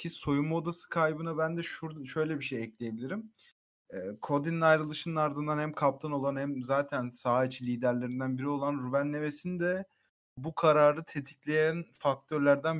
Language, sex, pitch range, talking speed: Turkish, male, 130-155 Hz, 145 wpm